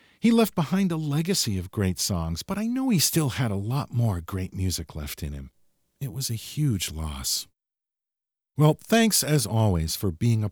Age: 50-69